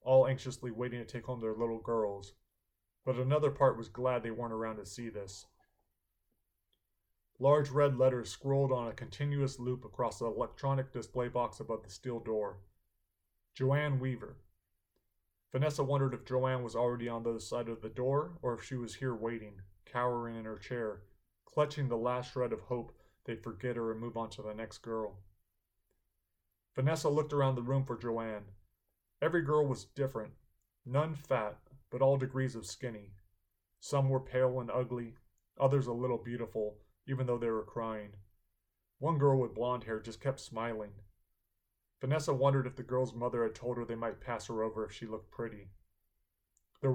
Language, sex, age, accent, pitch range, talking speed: English, male, 30-49, American, 105-130 Hz, 175 wpm